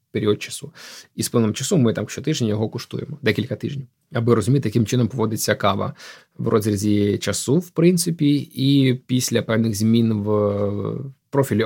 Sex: male